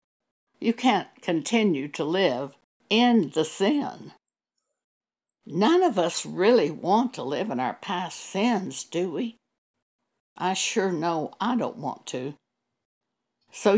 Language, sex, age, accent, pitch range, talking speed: English, female, 60-79, American, 160-225 Hz, 125 wpm